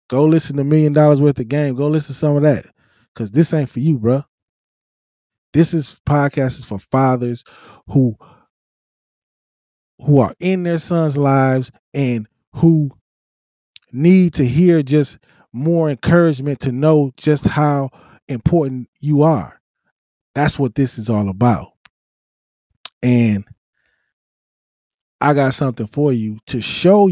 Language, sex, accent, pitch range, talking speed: English, male, American, 110-150 Hz, 135 wpm